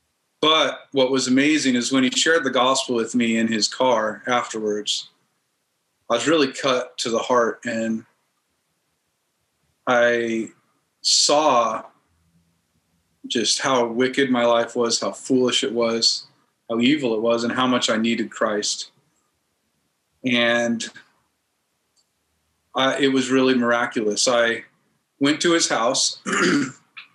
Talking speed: 125 wpm